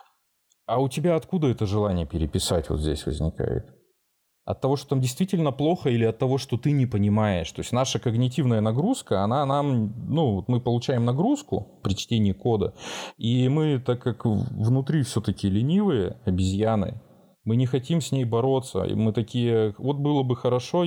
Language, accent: Russian, native